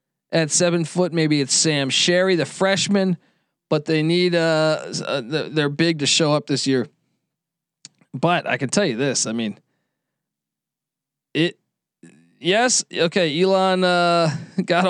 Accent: American